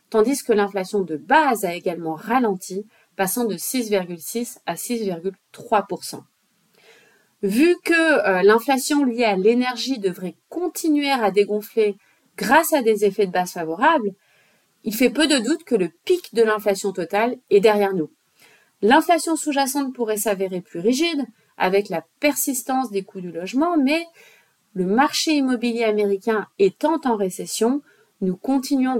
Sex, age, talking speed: female, 30-49, 140 wpm